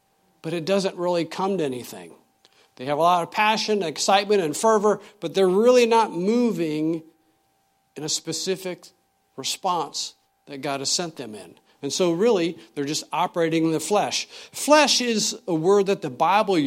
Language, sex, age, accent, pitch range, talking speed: English, male, 50-69, American, 140-200 Hz, 170 wpm